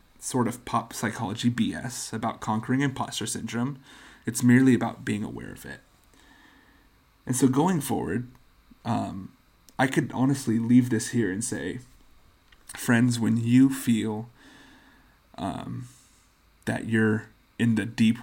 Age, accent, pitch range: 30-49, American, 110-125 Hz